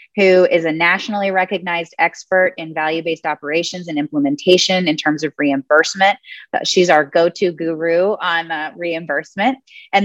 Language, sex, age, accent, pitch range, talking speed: English, female, 20-39, American, 155-180 Hz, 135 wpm